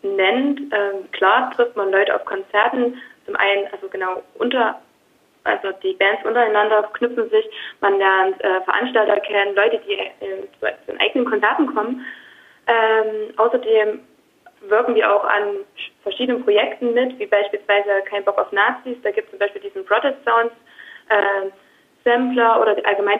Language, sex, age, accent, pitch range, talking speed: German, female, 20-39, German, 200-250 Hz, 155 wpm